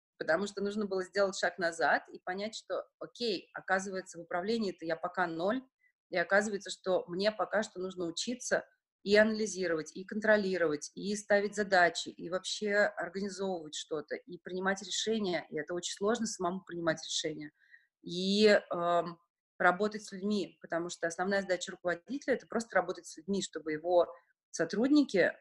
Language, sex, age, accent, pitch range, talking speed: Russian, female, 30-49, native, 170-205 Hz, 155 wpm